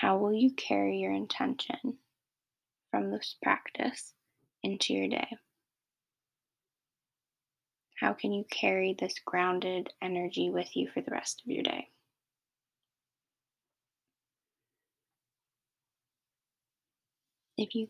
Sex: female